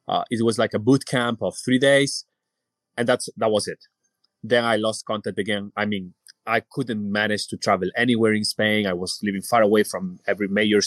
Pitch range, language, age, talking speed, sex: 105-130 Hz, Danish, 30-49, 210 wpm, male